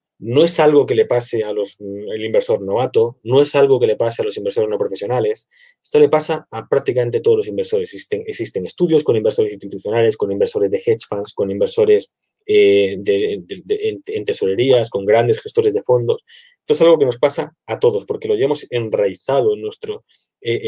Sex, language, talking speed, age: male, Spanish, 195 wpm, 20-39